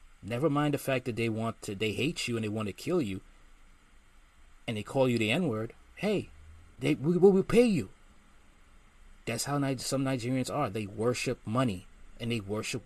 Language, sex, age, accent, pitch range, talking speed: English, male, 30-49, American, 100-125 Hz, 175 wpm